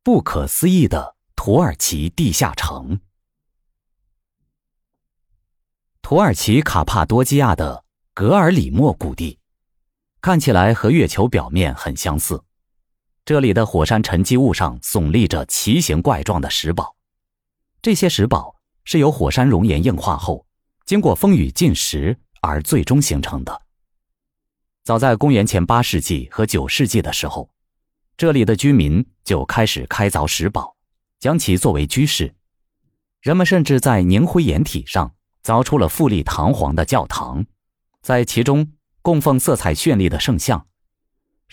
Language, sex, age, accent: Chinese, male, 30-49, native